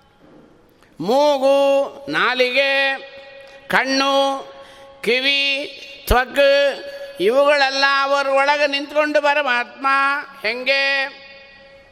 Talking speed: 55 wpm